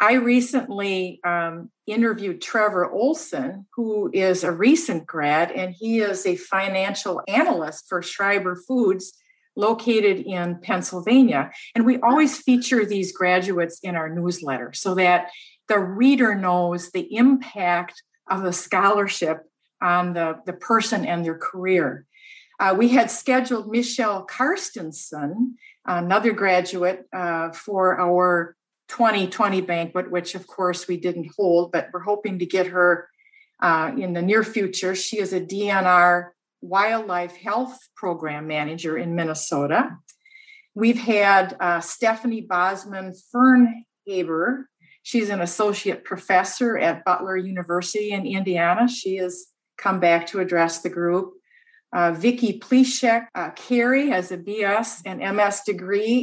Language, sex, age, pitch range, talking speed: English, female, 50-69, 180-230 Hz, 130 wpm